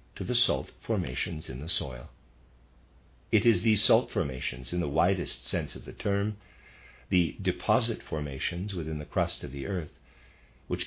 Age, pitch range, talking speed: 50-69, 65-100 Hz, 160 wpm